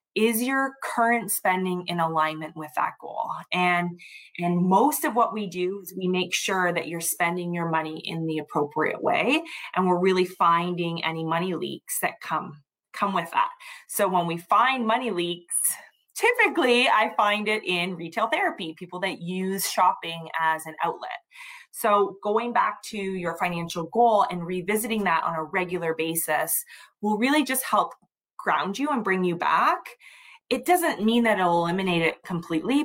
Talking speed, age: 170 wpm, 20-39